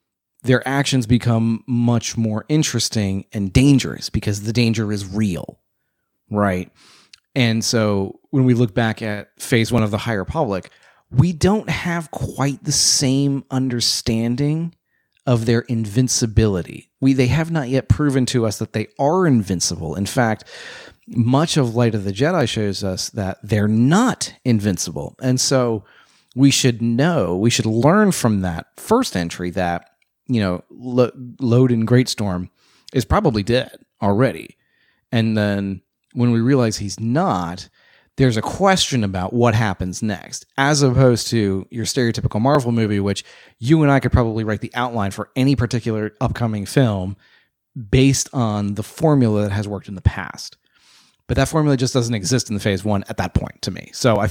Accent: American